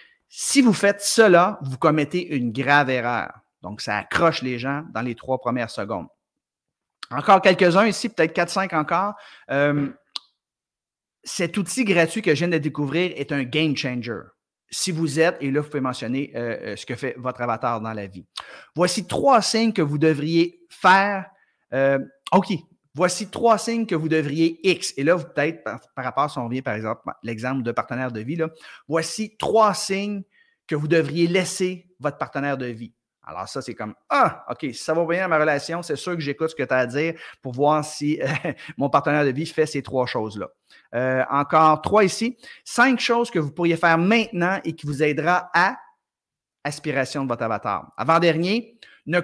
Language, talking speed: French, 195 wpm